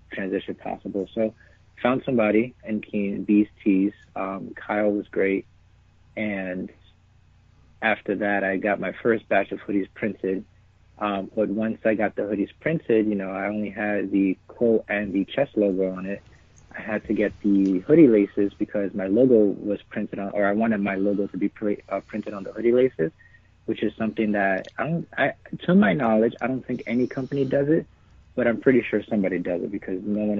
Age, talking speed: 30-49, 195 wpm